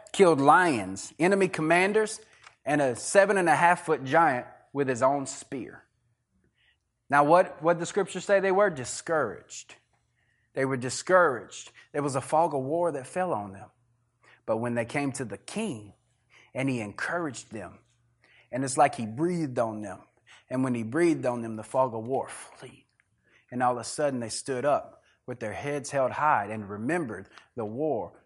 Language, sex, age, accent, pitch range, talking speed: English, male, 30-49, American, 115-160 Hz, 180 wpm